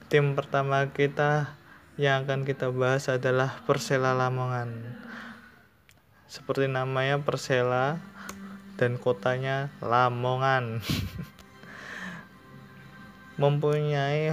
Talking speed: 70 wpm